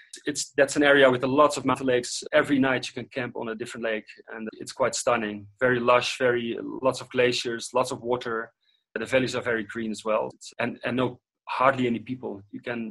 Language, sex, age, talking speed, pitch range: English, male, 30-49, 225 wpm, 115-135 Hz